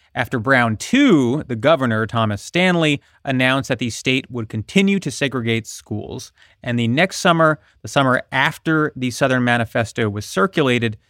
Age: 30-49